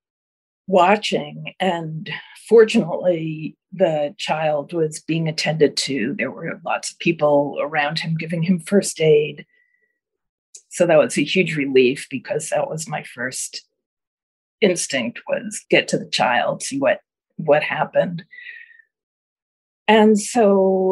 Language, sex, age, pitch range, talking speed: English, female, 40-59, 160-205 Hz, 125 wpm